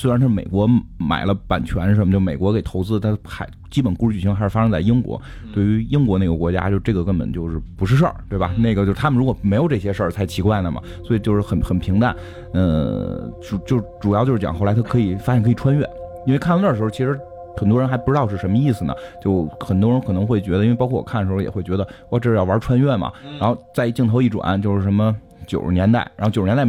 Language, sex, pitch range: Chinese, male, 90-115 Hz